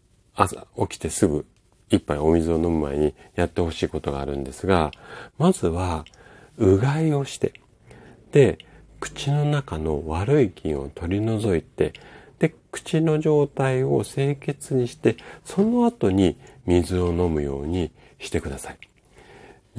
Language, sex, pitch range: Japanese, male, 80-125 Hz